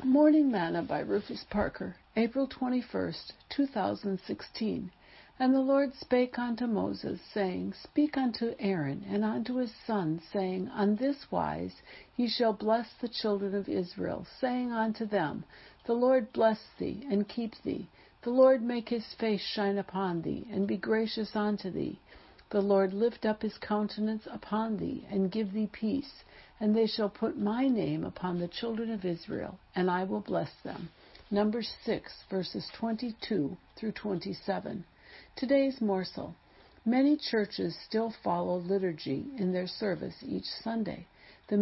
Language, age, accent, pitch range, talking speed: English, 60-79, American, 195-240 Hz, 150 wpm